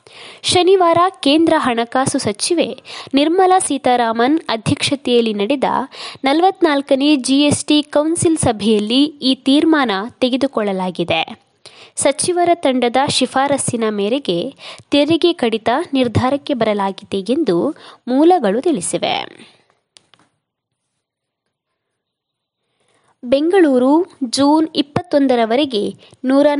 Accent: native